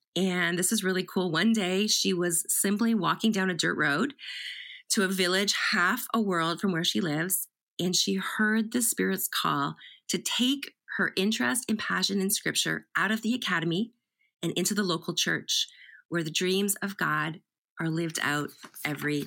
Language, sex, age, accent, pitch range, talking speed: English, female, 30-49, American, 180-220 Hz, 180 wpm